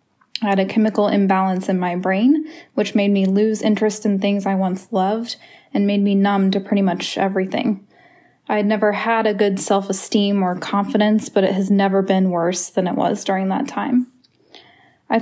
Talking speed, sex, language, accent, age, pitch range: 190 wpm, female, English, American, 10-29, 190-225 Hz